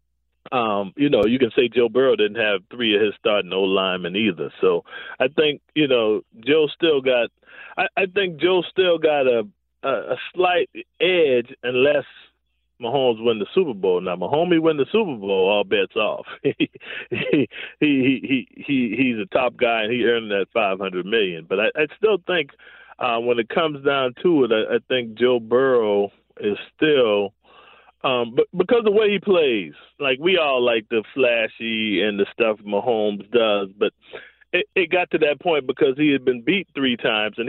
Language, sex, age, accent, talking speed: English, male, 40-59, American, 190 wpm